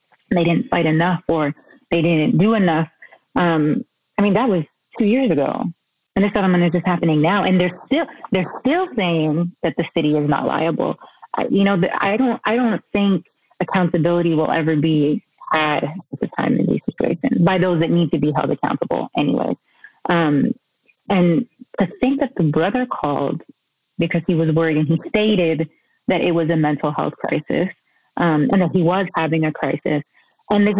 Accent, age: American, 30-49